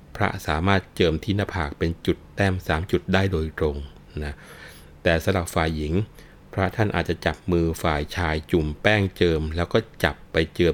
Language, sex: Thai, male